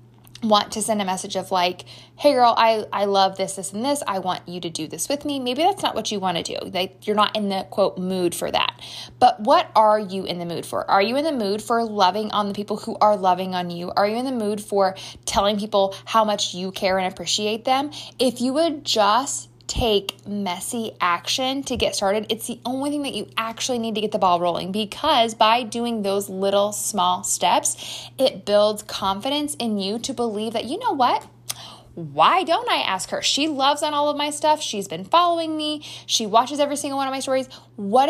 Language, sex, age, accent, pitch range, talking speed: English, female, 20-39, American, 195-270 Hz, 225 wpm